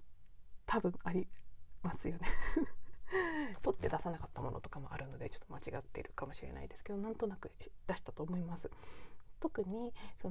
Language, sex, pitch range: Japanese, female, 175-295 Hz